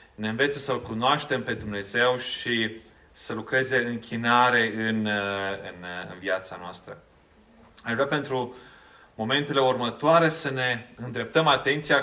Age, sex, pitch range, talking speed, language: 30-49, male, 110-130 Hz, 125 wpm, Romanian